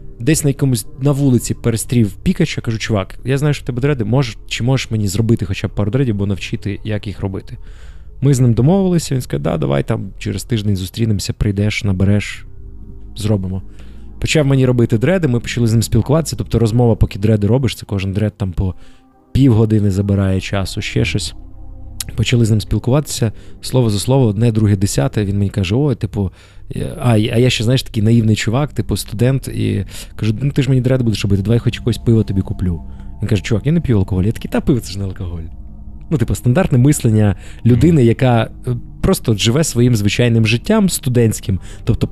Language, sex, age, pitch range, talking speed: Ukrainian, male, 20-39, 100-130 Hz, 200 wpm